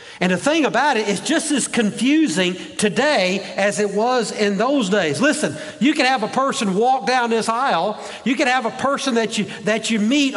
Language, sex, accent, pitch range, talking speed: English, male, American, 175-235 Hz, 205 wpm